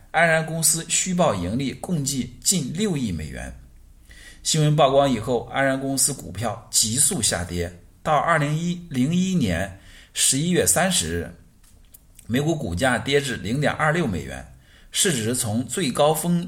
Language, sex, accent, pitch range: Chinese, male, native, 90-140 Hz